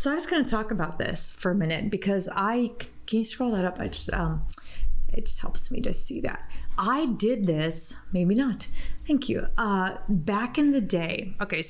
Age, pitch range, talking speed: 30-49, 180-225 Hz, 210 wpm